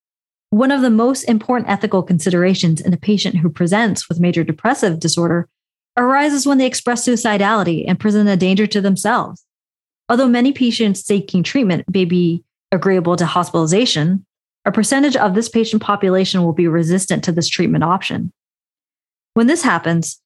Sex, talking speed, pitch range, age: female, 155 wpm, 175-230 Hz, 30-49